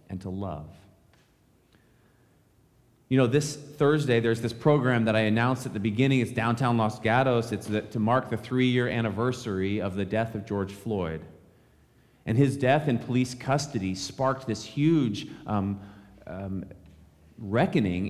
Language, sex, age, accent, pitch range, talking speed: English, male, 30-49, American, 100-140 Hz, 150 wpm